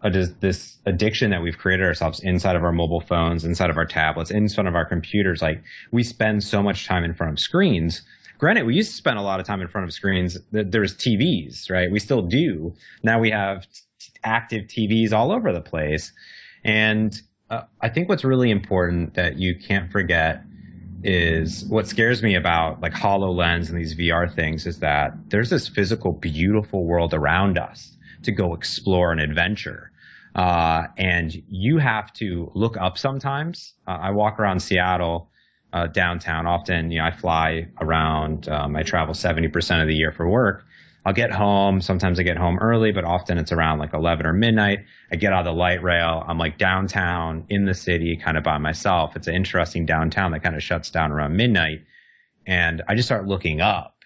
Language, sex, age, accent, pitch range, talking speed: English, male, 30-49, American, 85-105 Hz, 195 wpm